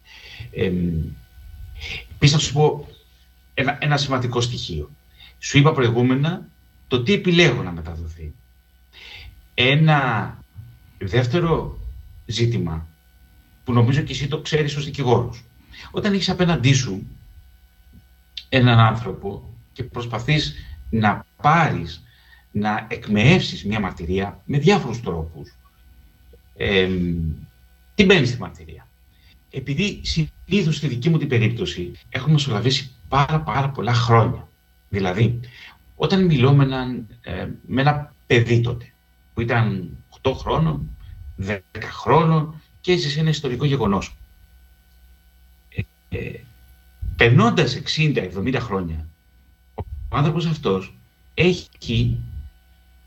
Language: Greek